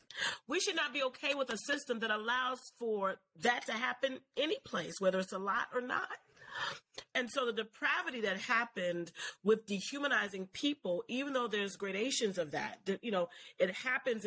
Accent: American